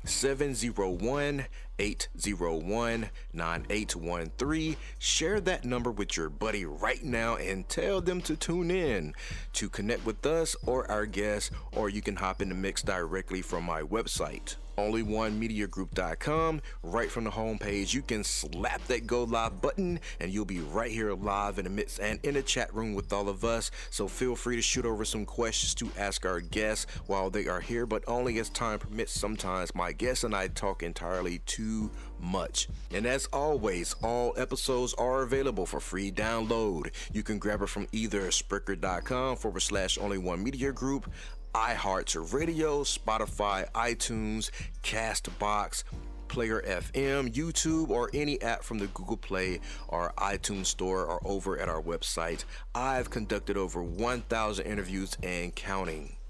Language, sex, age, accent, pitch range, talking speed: English, male, 30-49, American, 95-125 Hz, 170 wpm